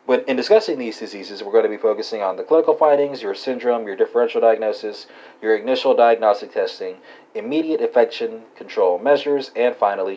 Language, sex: English, male